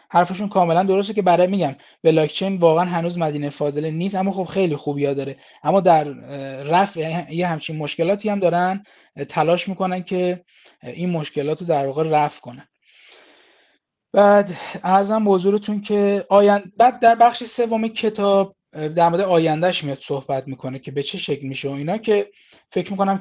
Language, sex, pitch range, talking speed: Persian, male, 145-185 Hz, 155 wpm